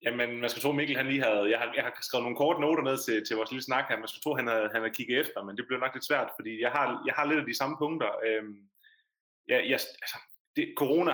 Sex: male